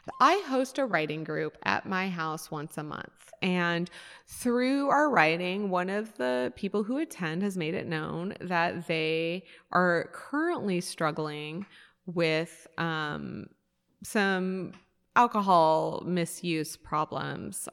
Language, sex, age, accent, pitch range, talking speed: English, female, 20-39, American, 170-205 Hz, 120 wpm